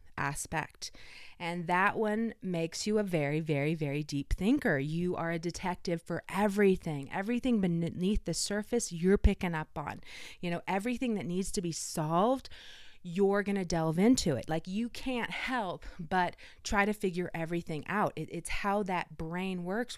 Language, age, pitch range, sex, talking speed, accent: English, 30-49, 160-195 Hz, female, 165 wpm, American